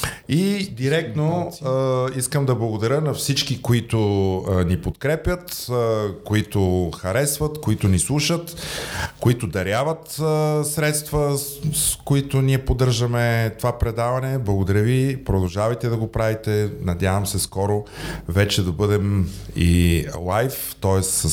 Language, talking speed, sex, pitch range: Bulgarian, 125 wpm, male, 100-135 Hz